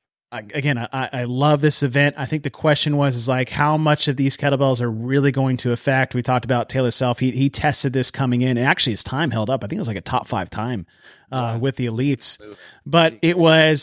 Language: English